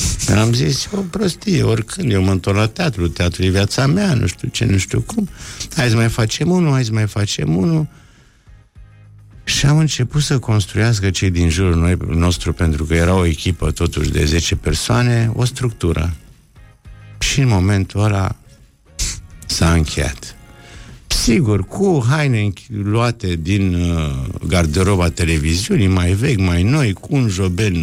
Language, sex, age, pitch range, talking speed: Romanian, male, 60-79, 85-120 Hz, 155 wpm